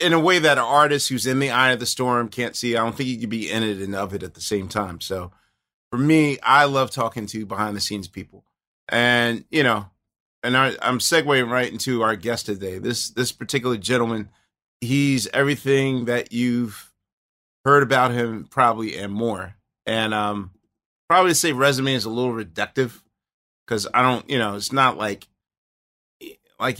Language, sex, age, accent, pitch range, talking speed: English, male, 30-49, American, 105-135 Hz, 190 wpm